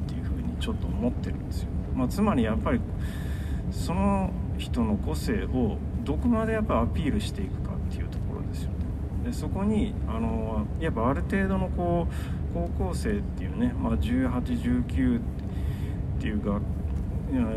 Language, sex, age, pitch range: Japanese, male, 40-59, 80-95 Hz